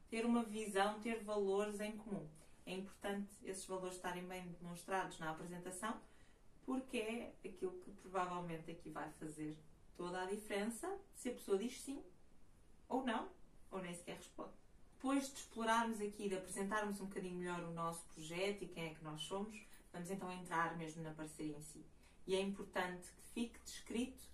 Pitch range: 175-220 Hz